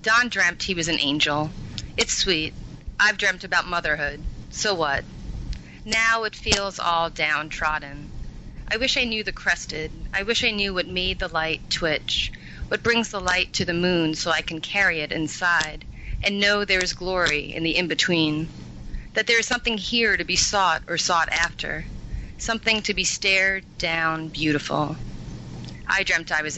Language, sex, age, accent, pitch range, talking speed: English, female, 30-49, American, 160-200 Hz, 170 wpm